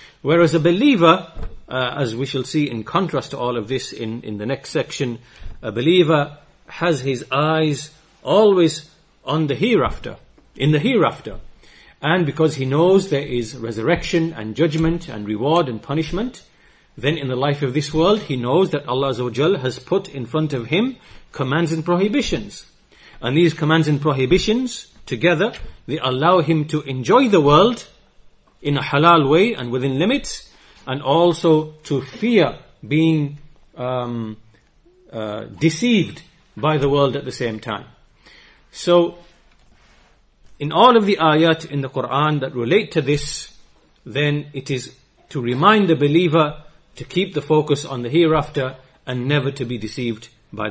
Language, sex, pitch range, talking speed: English, male, 130-170 Hz, 155 wpm